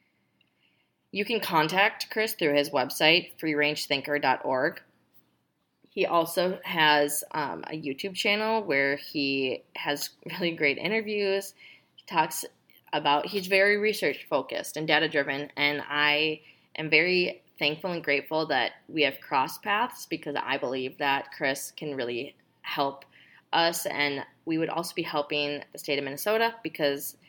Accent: American